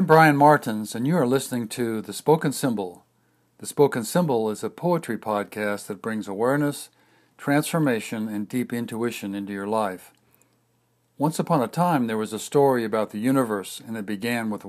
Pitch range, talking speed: 105-130 Hz, 175 wpm